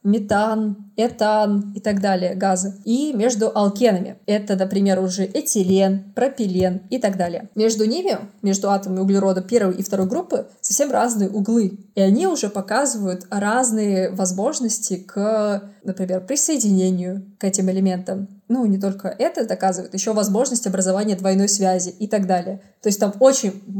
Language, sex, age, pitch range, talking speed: Russian, female, 20-39, 190-220 Hz, 145 wpm